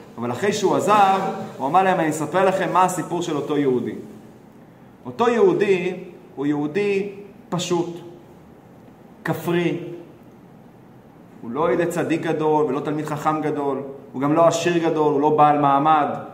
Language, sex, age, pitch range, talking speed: Hebrew, male, 30-49, 150-195 Hz, 145 wpm